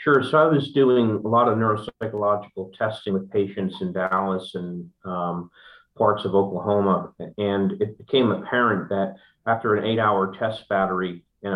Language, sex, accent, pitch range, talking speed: English, male, American, 95-115 Hz, 160 wpm